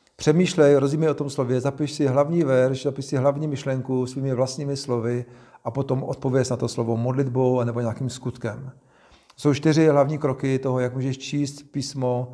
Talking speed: 175 wpm